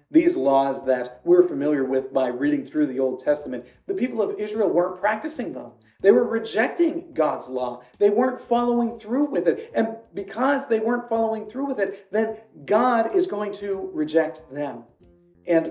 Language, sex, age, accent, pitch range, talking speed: English, male, 40-59, American, 130-215 Hz, 175 wpm